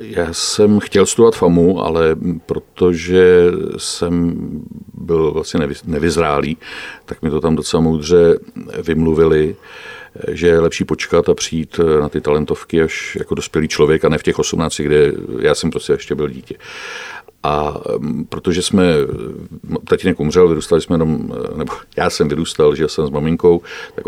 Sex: male